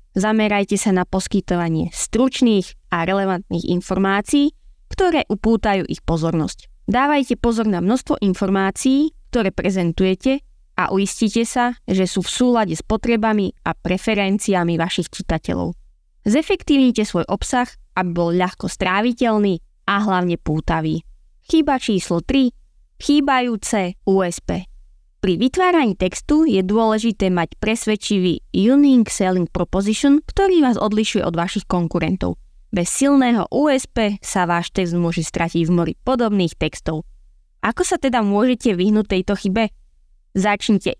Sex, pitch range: female, 180-235 Hz